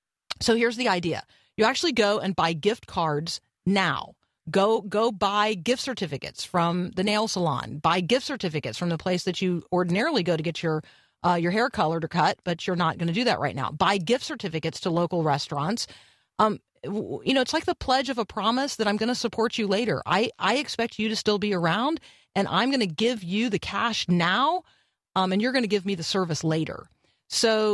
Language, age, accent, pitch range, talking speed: English, 40-59, American, 175-230 Hz, 215 wpm